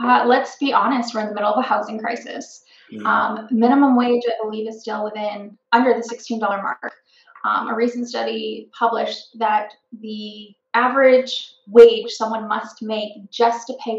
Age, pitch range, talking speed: 20-39, 220-255 Hz, 165 wpm